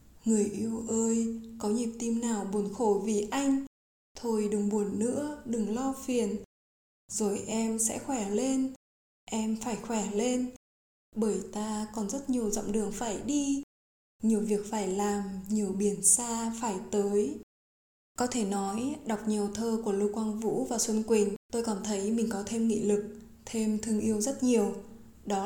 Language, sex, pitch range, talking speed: Vietnamese, female, 205-235 Hz, 170 wpm